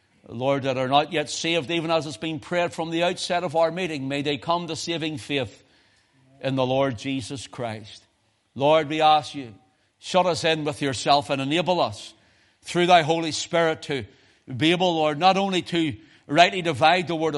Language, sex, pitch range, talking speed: English, male, 115-160 Hz, 190 wpm